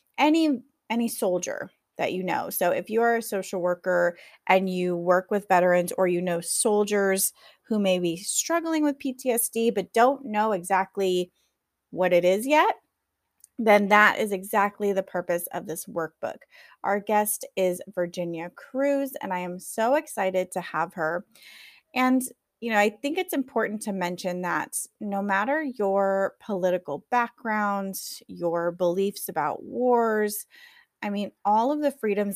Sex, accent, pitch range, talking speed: female, American, 180-230 Hz, 155 wpm